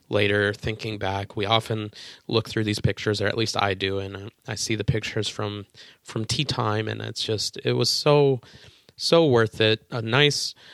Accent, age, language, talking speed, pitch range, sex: American, 20-39, English, 190 wpm, 105-125 Hz, male